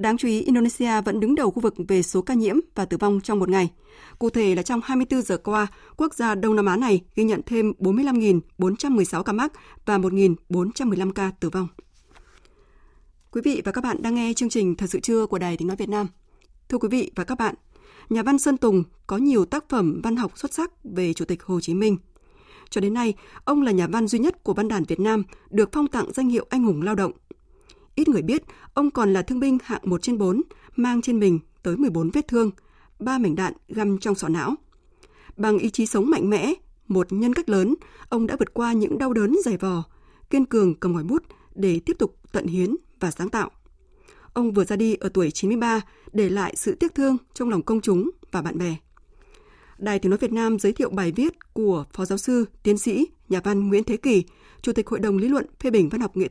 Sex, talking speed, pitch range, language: female, 230 wpm, 190-245 Hz, Vietnamese